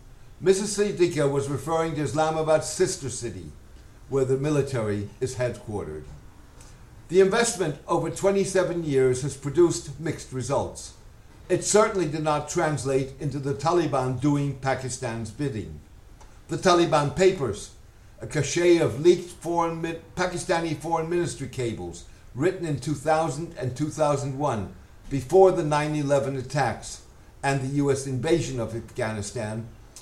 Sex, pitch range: male, 115-165 Hz